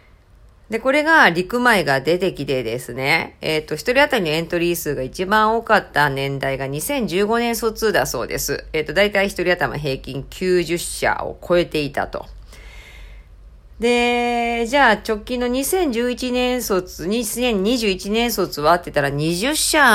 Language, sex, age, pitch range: Japanese, female, 40-59, 155-245 Hz